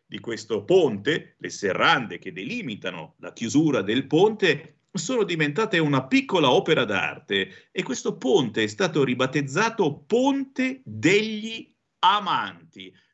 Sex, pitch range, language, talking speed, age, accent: male, 110-170 Hz, Italian, 120 wpm, 50-69, native